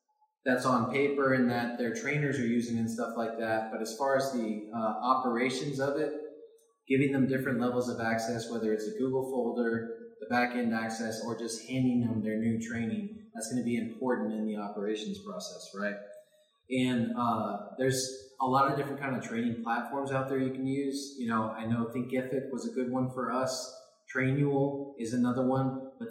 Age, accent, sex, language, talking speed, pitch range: 20-39, American, male, English, 195 wpm, 115-140 Hz